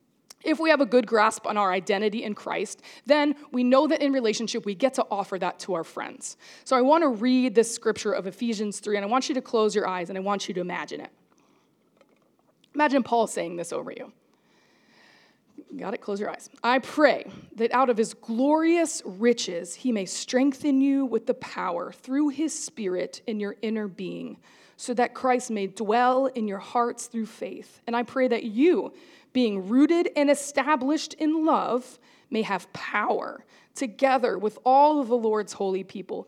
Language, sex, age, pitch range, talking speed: English, female, 20-39, 205-260 Hz, 190 wpm